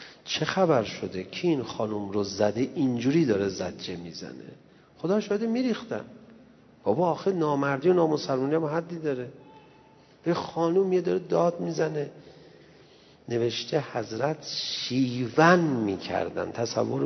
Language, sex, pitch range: Persian, male, 100-145 Hz